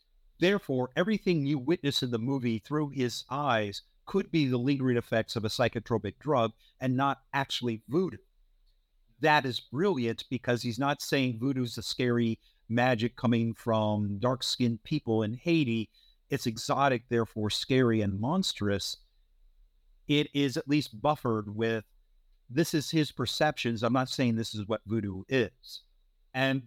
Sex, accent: male, American